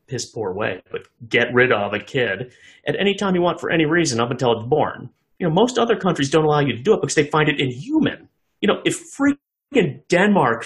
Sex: male